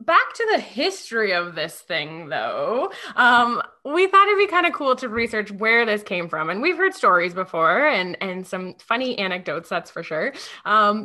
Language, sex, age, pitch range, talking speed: English, female, 20-39, 195-310 Hz, 195 wpm